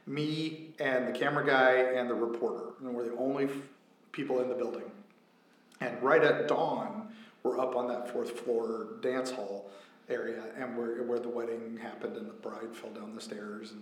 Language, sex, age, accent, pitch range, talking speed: English, male, 40-59, American, 120-145 Hz, 190 wpm